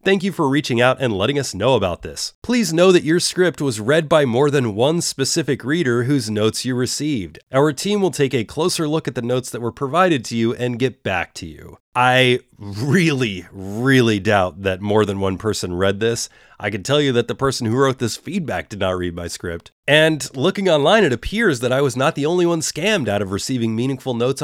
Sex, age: male, 30-49